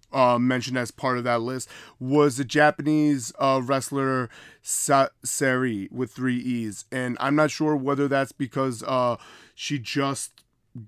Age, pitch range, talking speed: 30-49, 125-155 Hz, 150 wpm